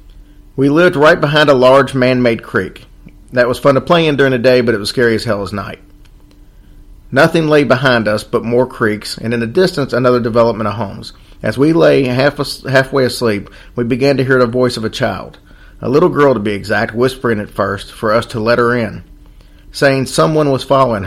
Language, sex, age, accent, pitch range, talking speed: English, male, 40-59, American, 110-135 Hz, 210 wpm